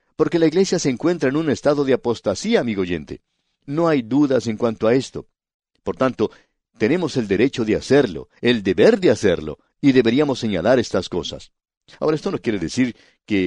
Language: English